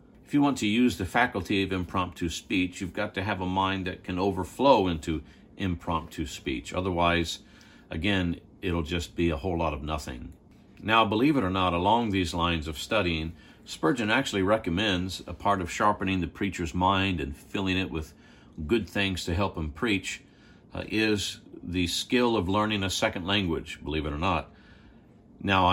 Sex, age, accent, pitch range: male, 50-69, American, 85-100 Hz